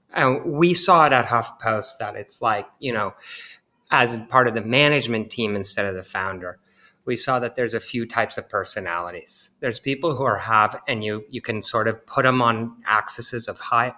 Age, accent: 30-49, American